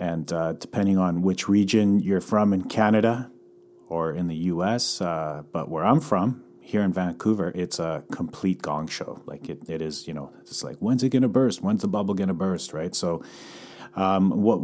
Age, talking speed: 40-59, 200 wpm